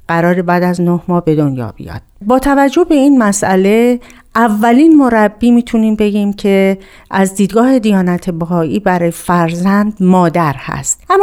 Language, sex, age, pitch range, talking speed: Persian, female, 50-69, 185-235 Hz, 145 wpm